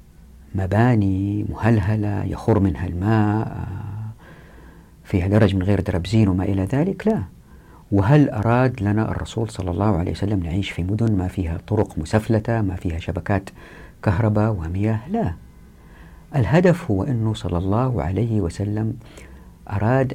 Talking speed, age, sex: 130 wpm, 50-69, female